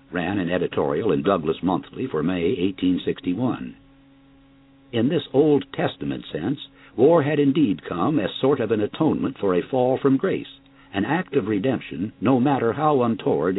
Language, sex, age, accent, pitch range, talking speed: English, male, 60-79, American, 115-135 Hz, 160 wpm